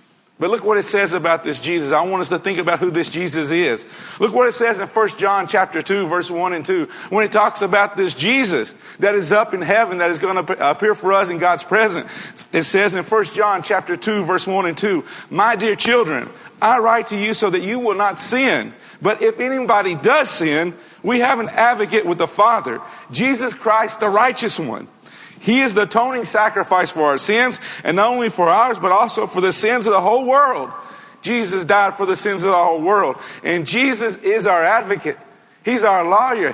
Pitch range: 180-230 Hz